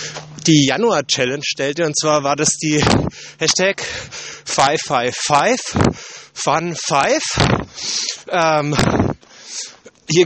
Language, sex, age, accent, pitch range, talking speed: German, male, 30-49, German, 125-160 Hz, 80 wpm